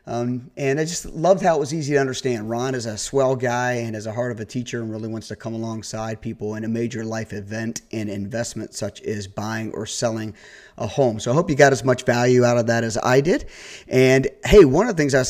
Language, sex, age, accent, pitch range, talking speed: English, male, 40-59, American, 115-135 Hz, 260 wpm